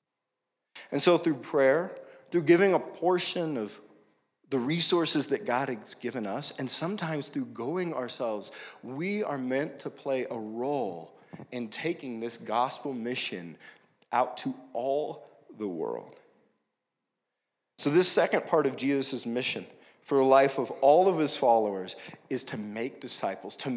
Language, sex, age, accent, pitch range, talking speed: English, male, 40-59, American, 130-175 Hz, 145 wpm